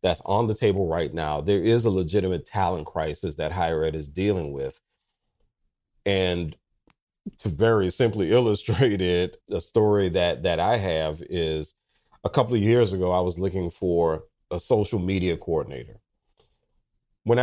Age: 40-59